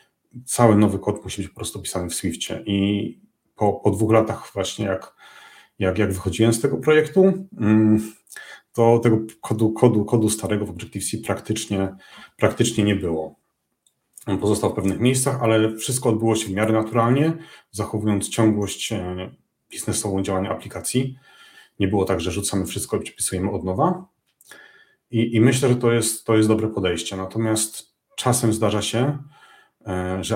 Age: 40-59